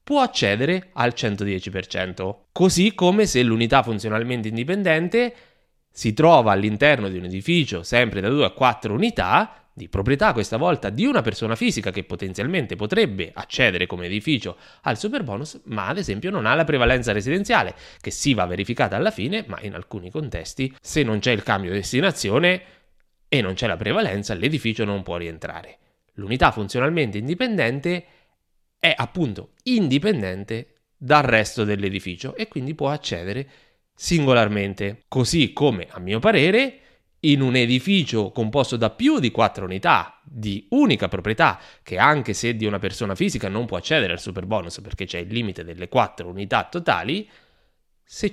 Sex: male